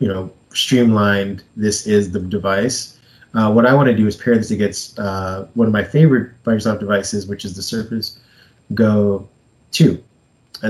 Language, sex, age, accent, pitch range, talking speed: English, male, 20-39, American, 105-120 Hz, 175 wpm